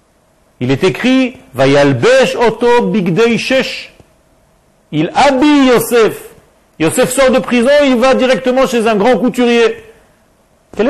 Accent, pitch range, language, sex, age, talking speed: French, 205-260 Hz, French, male, 50-69, 105 wpm